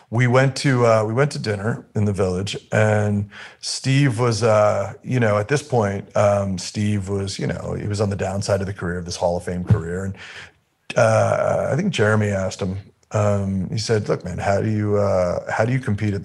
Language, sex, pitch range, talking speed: English, male, 95-110 Hz, 220 wpm